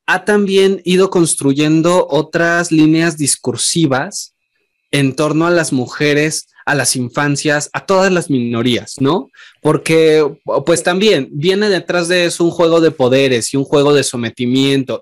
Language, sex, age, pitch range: Spanish, male, 20-39, 135-165 Hz